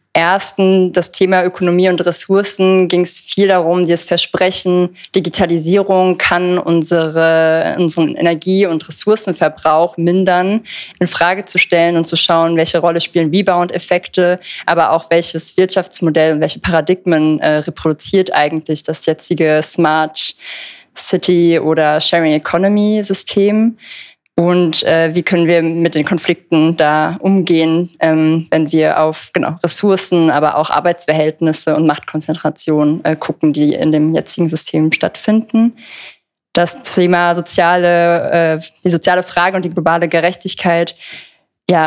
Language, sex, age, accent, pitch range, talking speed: German, female, 20-39, German, 160-180 Hz, 130 wpm